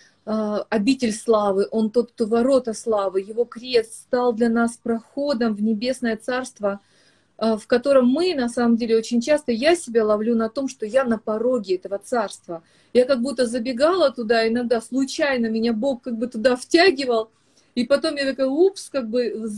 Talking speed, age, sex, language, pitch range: 170 wpm, 30-49, female, Russian, 235-300 Hz